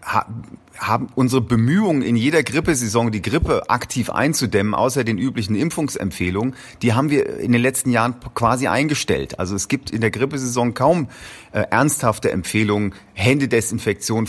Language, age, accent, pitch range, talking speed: German, 40-59, German, 100-125 Hz, 145 wpm